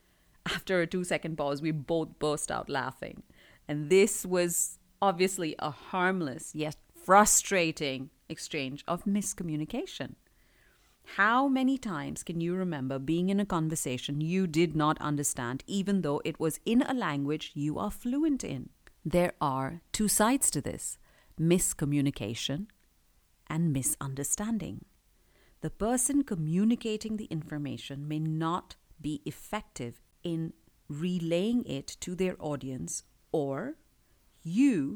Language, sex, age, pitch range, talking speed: English, female, 50-69, 150-195 Hz, 120 wpm